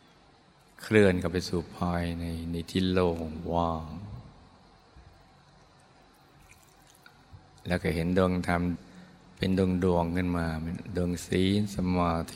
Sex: male